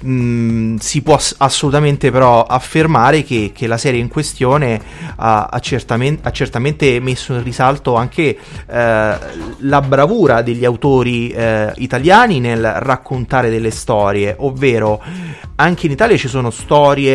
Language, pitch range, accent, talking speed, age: Italian, 110-140 Hz, native, 130 wpm, 30-49